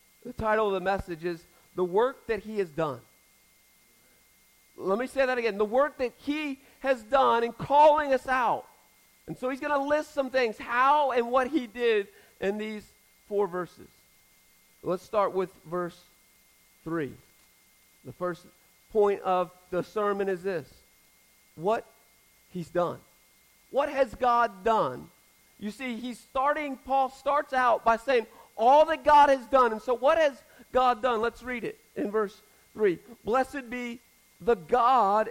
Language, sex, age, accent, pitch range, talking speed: English, male, 40-59, American, 210-275 Hz, 160 wpm